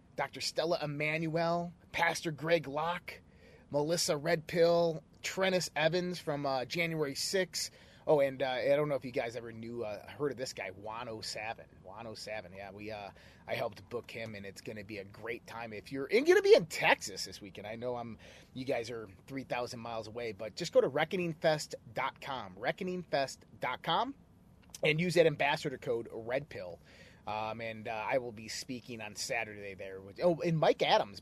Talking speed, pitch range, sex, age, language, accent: 180 wpm, 105-145 Hz, male, 30-49, English, American